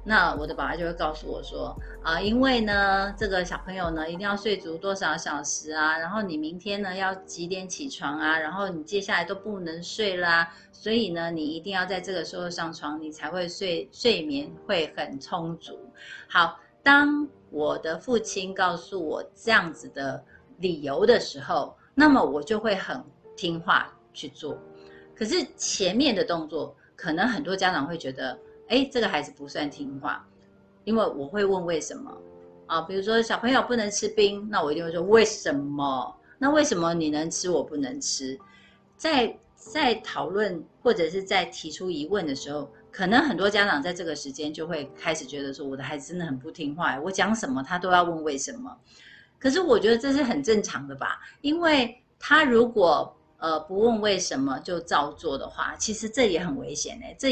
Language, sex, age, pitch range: Chinese, female, 30-49, 155-225 Hz